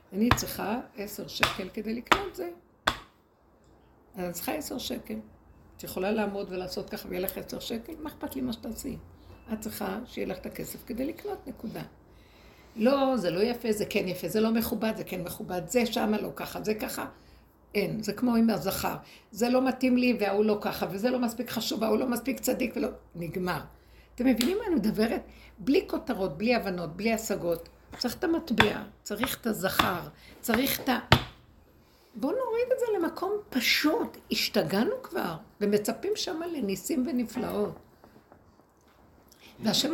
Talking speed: 160 wpm